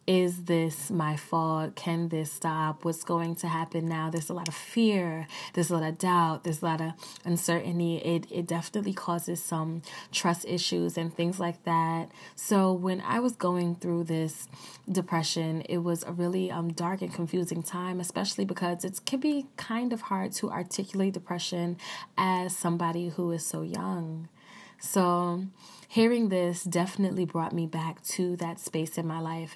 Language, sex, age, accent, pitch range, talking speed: English, female, 20-39, American, 165-185 Hz, 175 wpm